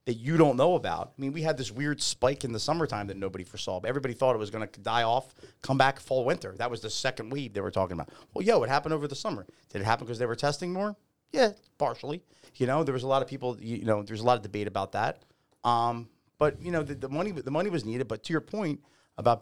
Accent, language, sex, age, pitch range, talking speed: American, English, male, 30-49, 105-135 Hz, 280 wpm